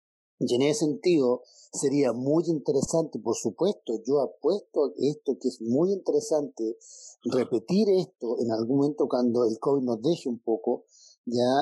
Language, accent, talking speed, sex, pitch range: Spanish, Mexican, 150 wpm, male, 130-210 Hz